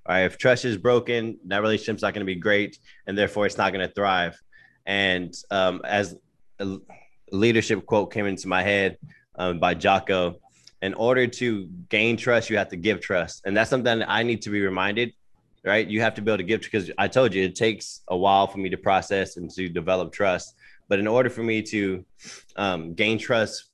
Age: 20-39